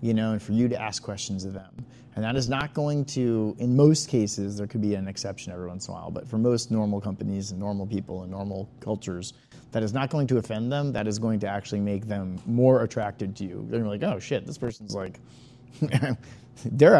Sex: male